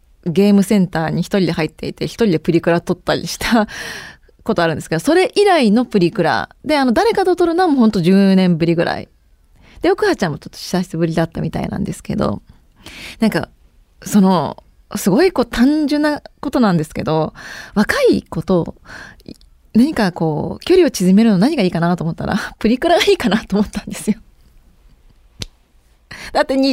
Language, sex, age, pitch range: Japanese, female, 20-39, 170-265 Hz